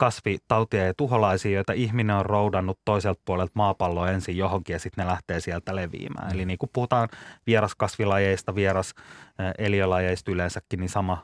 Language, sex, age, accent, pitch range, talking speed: Finnish, male, 20-39, native, 95-110 Hz, 145 wpm